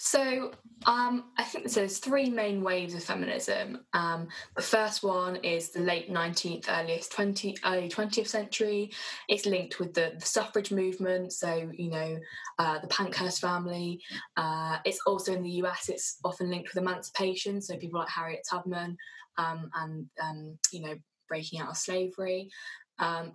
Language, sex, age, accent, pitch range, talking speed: English, female, 10-29, British, 165-195 Hz, 160 wpm